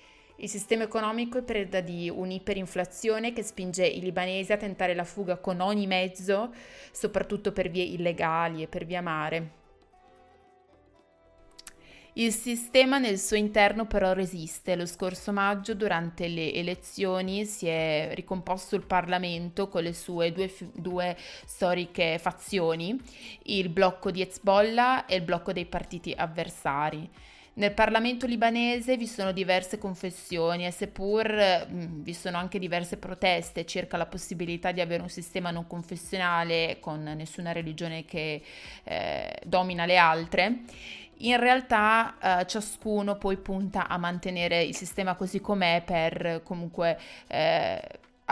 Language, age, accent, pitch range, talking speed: Italian, 20-39, native, 175-205 Hz, 135 wpm